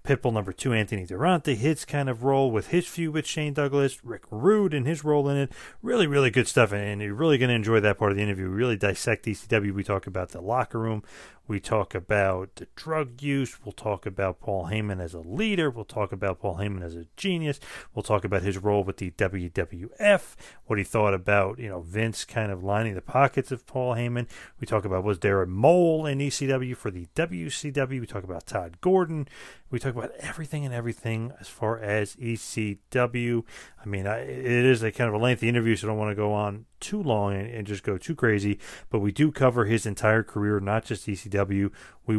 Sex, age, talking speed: male, 30-49, 220 wpm